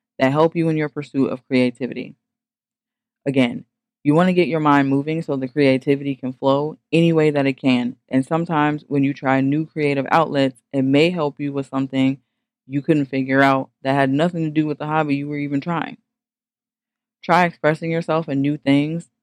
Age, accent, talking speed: 20-39, American, 195 wpm